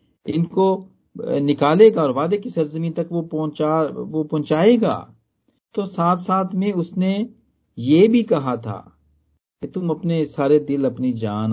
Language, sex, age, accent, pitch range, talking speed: Hindi, male, 50-69, native, 110-185 Hz, 140 wpm